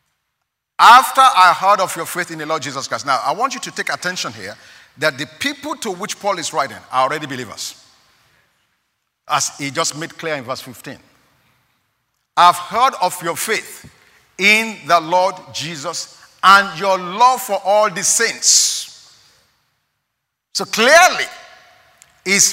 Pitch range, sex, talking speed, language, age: 160-255 Hz, male, 150 wpm, English, 50-69